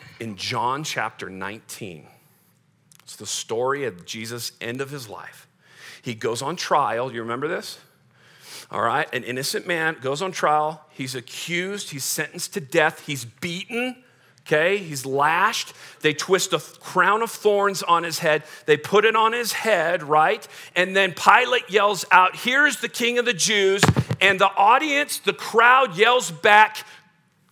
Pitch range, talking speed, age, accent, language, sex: 135-200 Hz, 160 wpm, 40-59, American, English, male